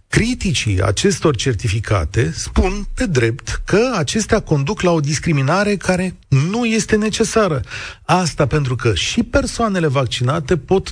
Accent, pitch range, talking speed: native, 115-175 Hz, 125 wpm